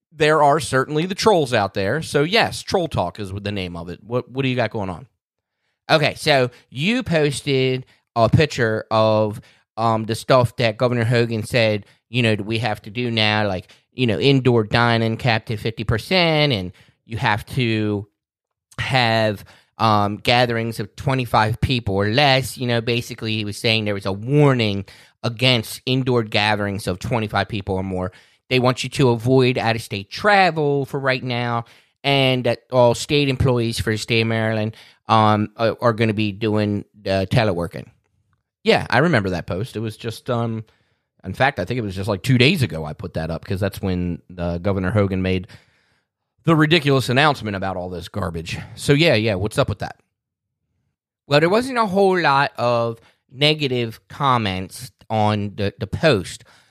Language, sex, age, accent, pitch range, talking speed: English, male, 30-49, American, 105-130 Hz, 180 wpm